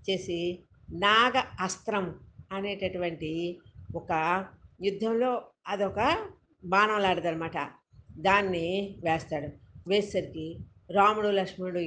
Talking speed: 65 wpm